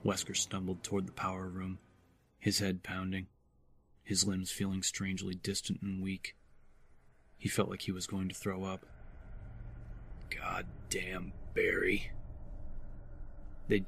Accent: American